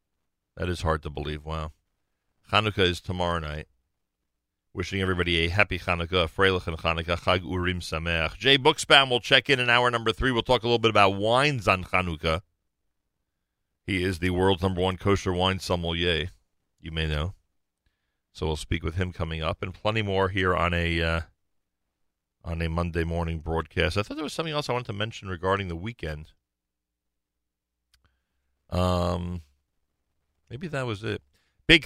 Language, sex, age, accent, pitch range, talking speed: English, male, 40-59, American, 80-100 Hz, 170 wpm